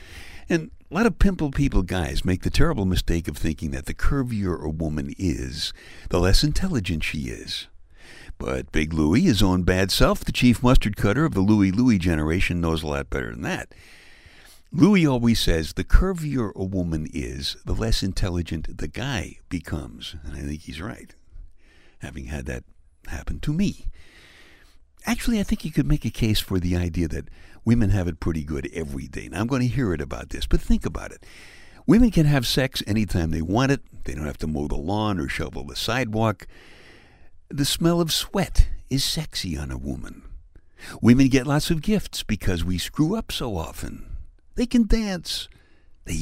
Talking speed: 190 wpm